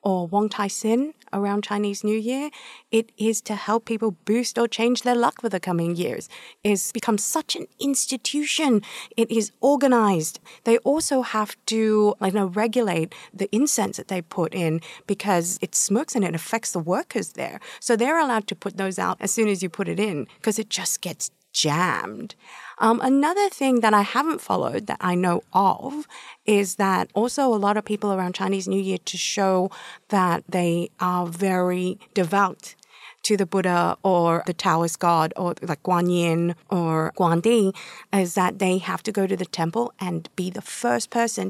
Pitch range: 180-230 Hz